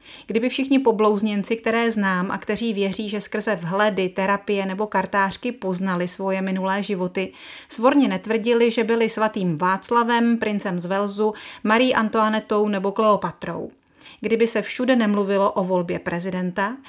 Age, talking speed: 30-49, 135 wpm